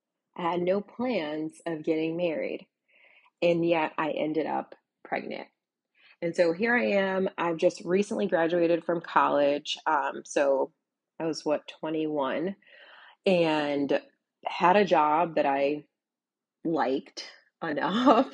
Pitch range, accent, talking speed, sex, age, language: 155-190 Hz, American, 125 wpm, female, 30-49, English